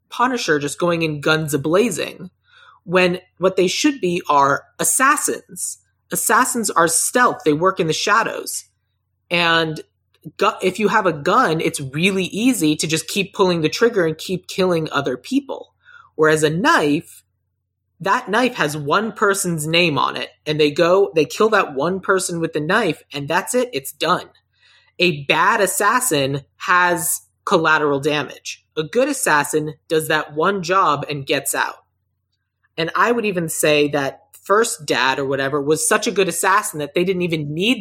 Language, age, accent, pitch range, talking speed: English, 30-49, American, 150-190 Hz, 165 wpm